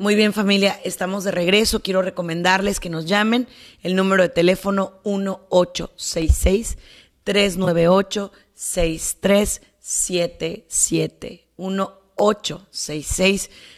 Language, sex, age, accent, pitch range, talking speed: Spanish, female, 30-49, Mexican, 165-195 Hz, 70 wpm